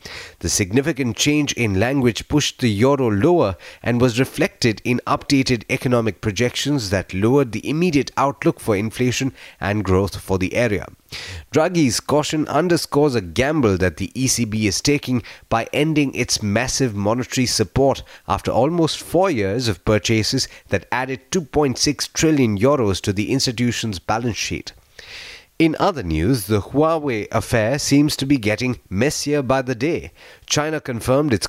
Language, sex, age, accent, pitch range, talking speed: English, male, 30-49, Indian, 105-140 Hz, 145 wpm